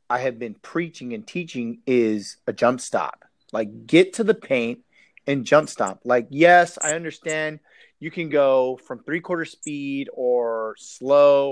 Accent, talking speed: American, 160 wpm